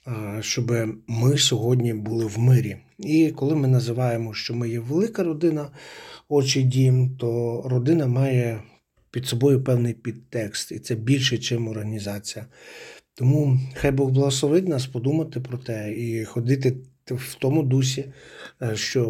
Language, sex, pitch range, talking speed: Ukrainian, male, 115-135 Hz, 135 wpm